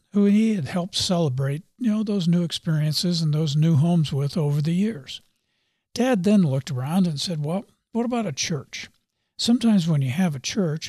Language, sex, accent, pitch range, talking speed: English, male, American, 155-205 Hz, 195 wpm